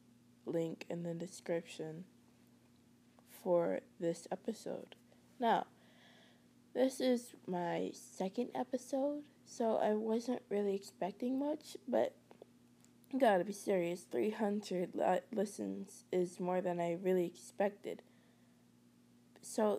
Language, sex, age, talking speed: English, female, 20-39, 95 wpm